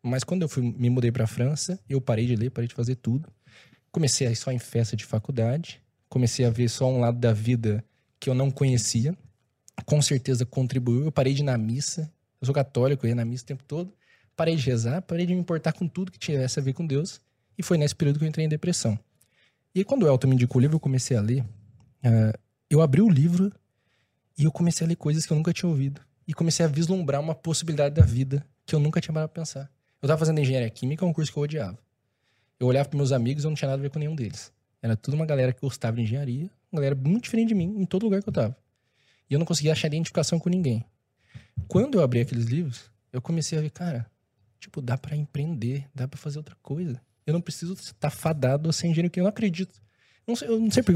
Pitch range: 125-165 Hz